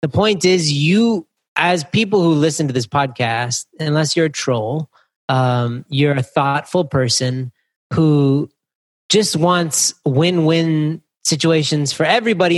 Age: 30-49